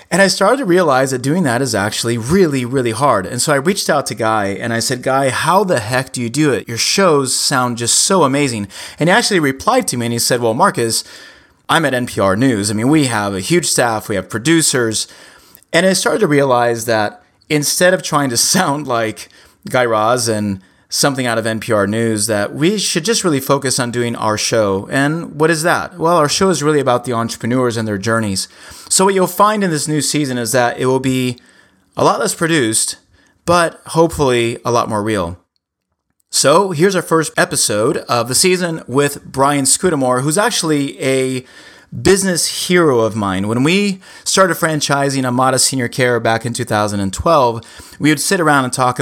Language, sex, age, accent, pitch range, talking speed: English, male, 30-49, American, 115-155 Hz, 200 wpm